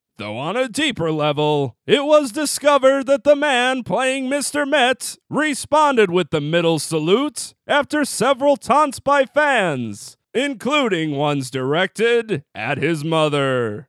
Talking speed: 130 wpm